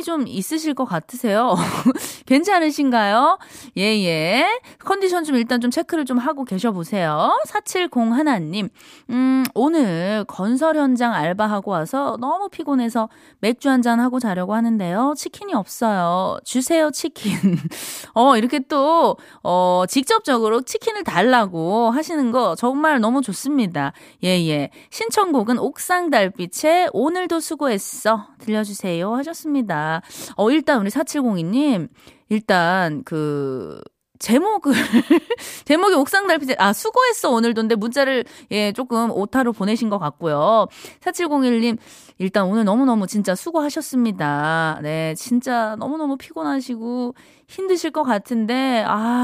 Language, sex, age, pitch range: Korean, female, 20-39, 205-305 Hz